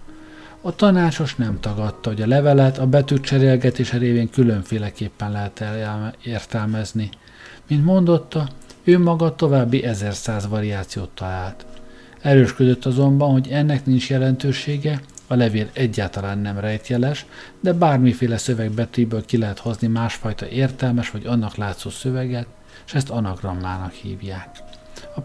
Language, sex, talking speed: Hungarian, male, 120 wpm